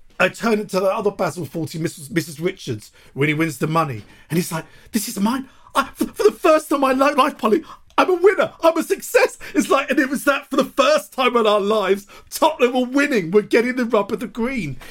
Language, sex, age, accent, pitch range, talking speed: English, male, 50-69, British, 145-230 Hz, 240 wpm